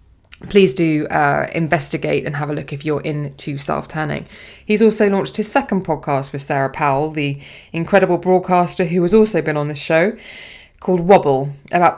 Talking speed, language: 170 wpm, English